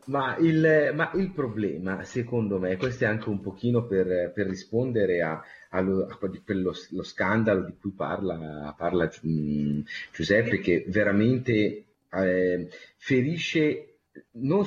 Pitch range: 95-125 Hz